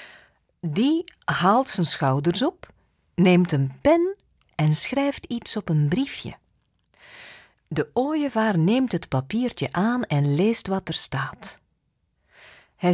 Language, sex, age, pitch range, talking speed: Dutch, female, 40-59, 155-245 Hz, 120 wpm